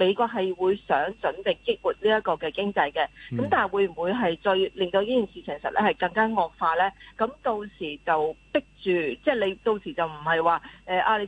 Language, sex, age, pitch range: Chinese, female, 40-59, 180-240 Hz